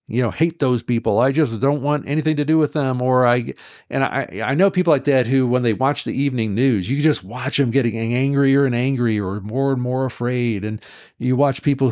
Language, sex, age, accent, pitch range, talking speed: English, male, 50-69, American, 100-130 Hz, 235 wpm